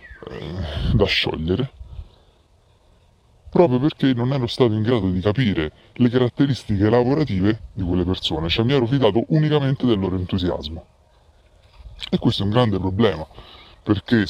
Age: 30-49